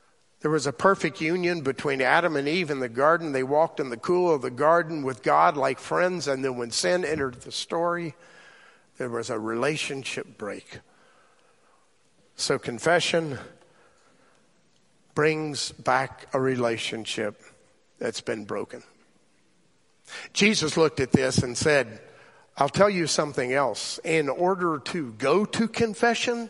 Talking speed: 140 wpm